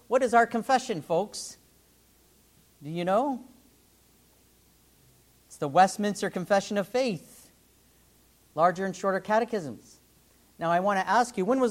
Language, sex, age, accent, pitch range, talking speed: English, male, 40-59, American, 175-225 Hz, 135 wpm